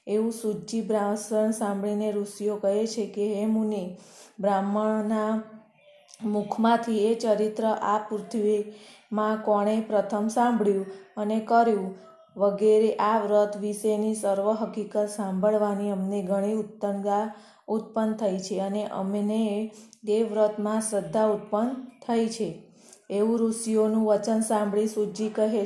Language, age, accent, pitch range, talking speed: Gujarati, 20-39, native, 205-220 Hz, 110 wpm